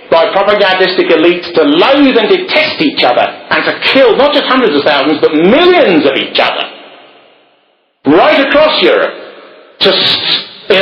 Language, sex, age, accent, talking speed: English, male, 50-69, British, 145 wpm